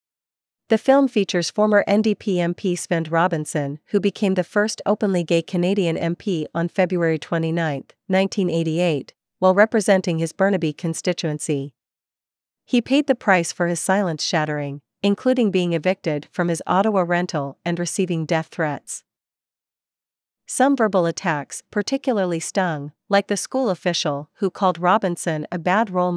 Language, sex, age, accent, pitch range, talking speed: English, female, 40-59, American, 165-200 Hz, 135 wpm